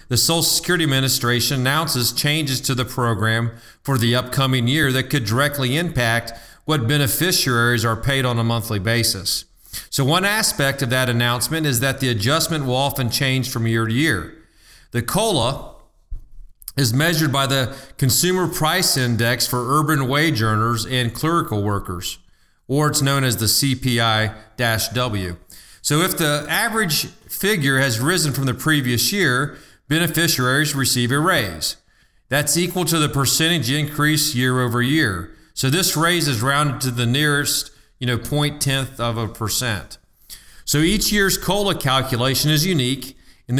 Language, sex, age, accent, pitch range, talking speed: English, male, 40-59, American, 120-155 Hz, 155 wpm